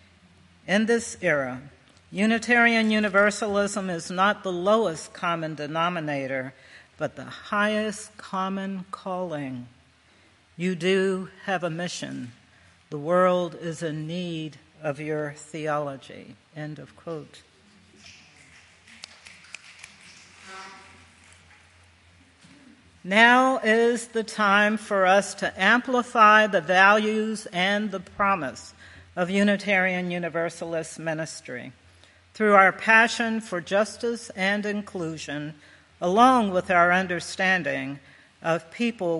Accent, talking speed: American, 95 wpm